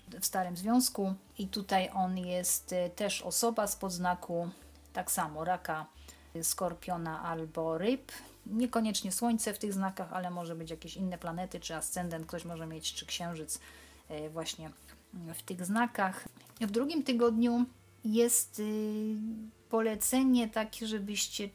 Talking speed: 130 wpm